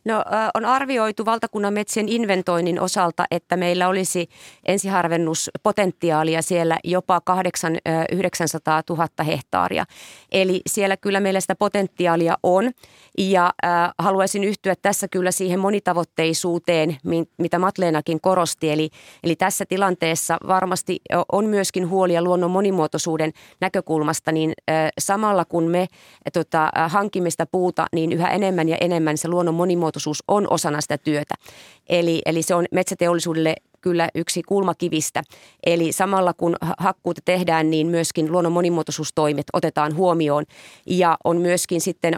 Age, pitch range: 30-49, 160-185 Hz